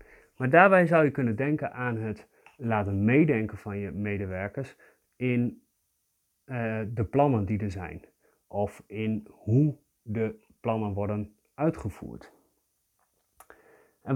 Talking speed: 120 wpm